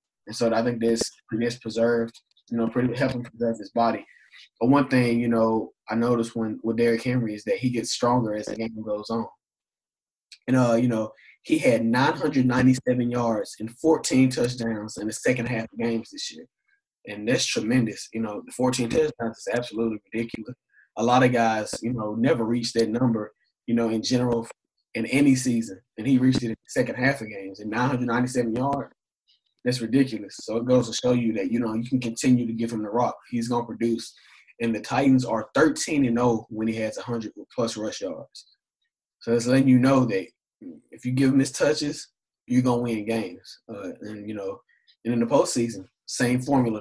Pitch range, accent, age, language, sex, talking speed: 115-125 Hz, American, 20-39, English, male, 210 wpm